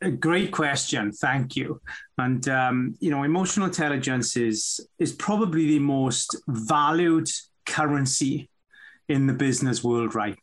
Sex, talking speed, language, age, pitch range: male, 125 wpm, English, 30-49, 130-165 Hz